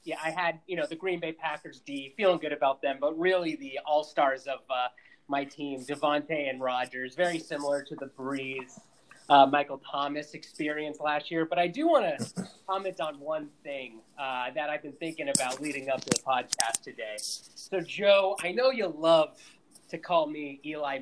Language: English